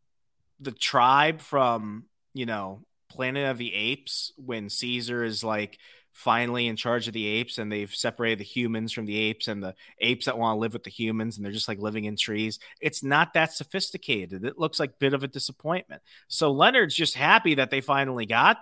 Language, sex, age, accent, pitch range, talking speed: English, male, 30-49, American, 120-155 Hz, 205 wpm